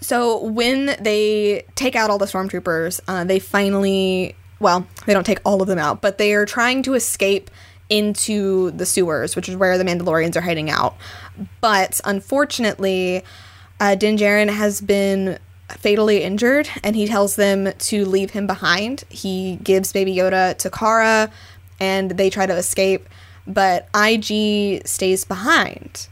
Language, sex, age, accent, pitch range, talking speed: English, female, 10-29, American, 175-210 Hz, 155 wpm